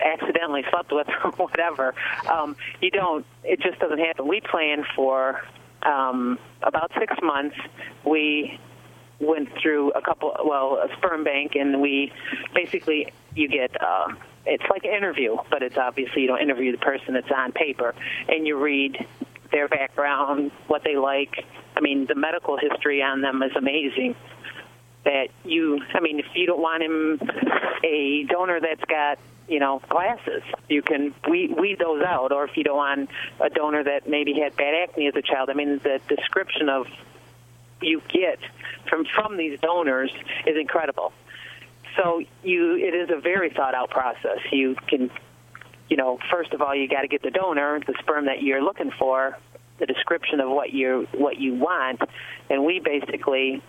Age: 40-59